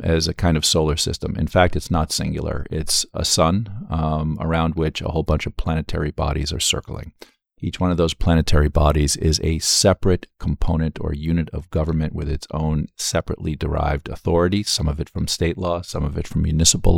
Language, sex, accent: English, male, American